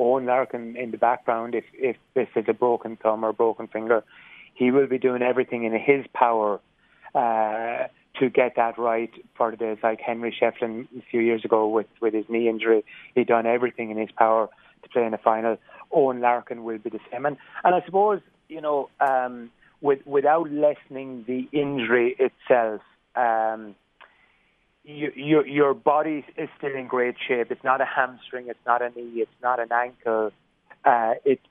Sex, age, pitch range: male, 30-49, 115-135 Hz